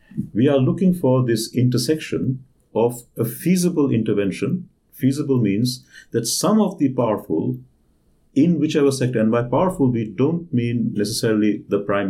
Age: 50-69